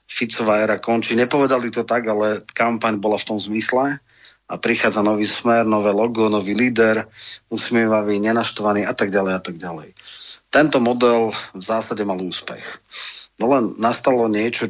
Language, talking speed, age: Slovak, 155 wpm, 30-49